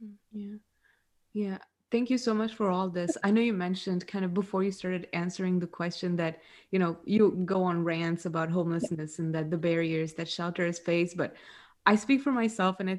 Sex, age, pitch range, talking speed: female, 20-39, 170-200 Hz, 205 wpm